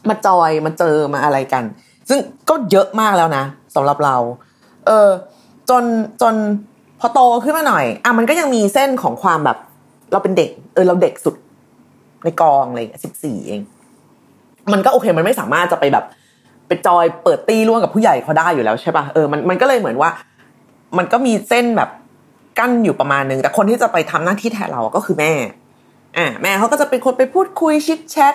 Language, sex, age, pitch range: Thai, female, 20-39, 160-250 Hz